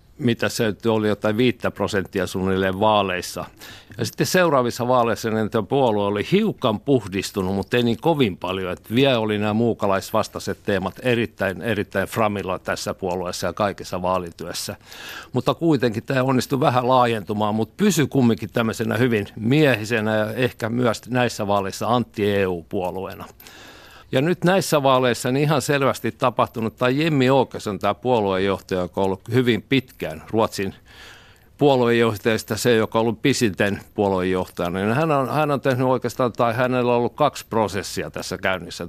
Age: 50-69